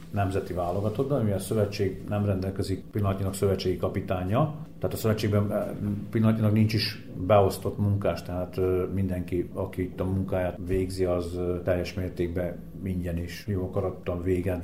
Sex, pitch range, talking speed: male, 90-105 Hz, 135 wpm